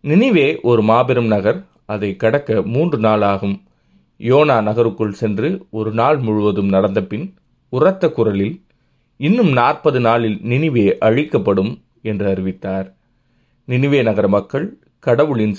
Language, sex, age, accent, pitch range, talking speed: Tamil, male, 30-49, native, 100-120 Hz, 110 wpm